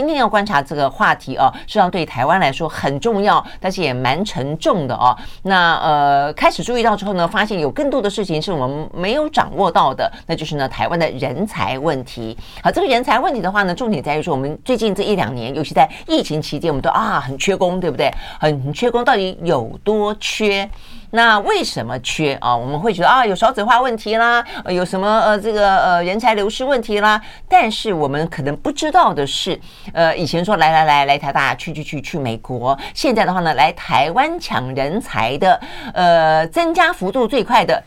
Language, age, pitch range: Chinese, 50-69, 150-220 Hz